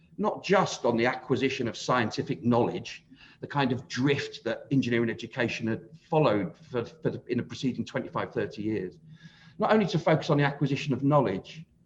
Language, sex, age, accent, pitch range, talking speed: English, male, 40-59, British, 120-160 Hz, 170 wpm